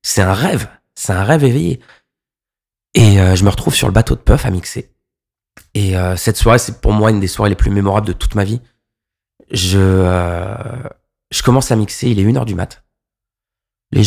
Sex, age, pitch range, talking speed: male, 20-39, 95-115 Hz, 210 wpm